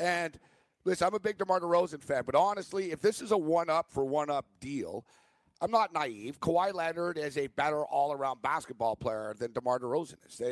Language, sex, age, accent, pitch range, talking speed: English, male, 50-69, American, 145-185 Hz, 195 wpm